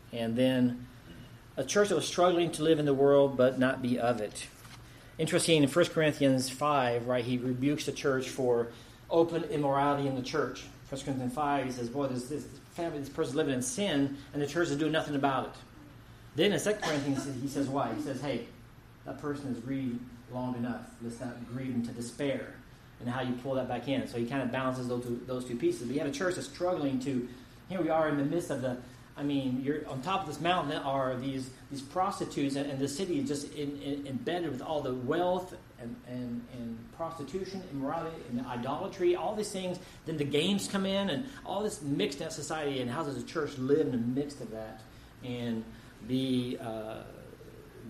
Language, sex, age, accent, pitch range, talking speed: English, male, 40-59, American, 125-150 Hz, 210 wpm